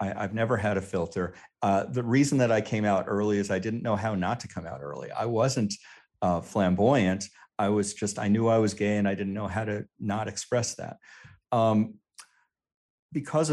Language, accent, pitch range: English, American, 95-120 Hz